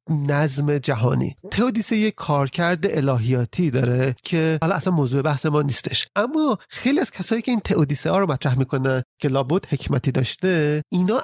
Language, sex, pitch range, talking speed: Persian, male, 140-190 Hz, 160 wpm